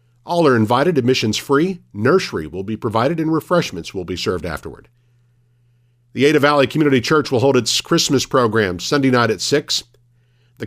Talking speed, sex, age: 170 wpm, male, 50-69